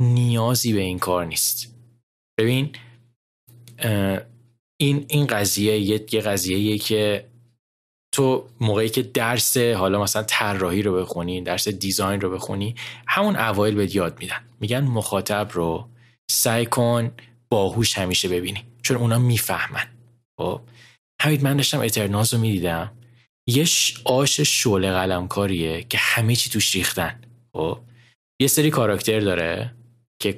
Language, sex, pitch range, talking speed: Persian, male, 95-120 Hz, 120 wpm